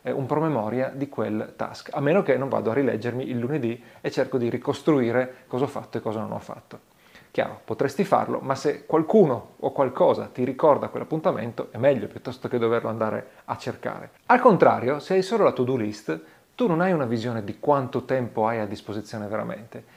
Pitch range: 120-160 Hz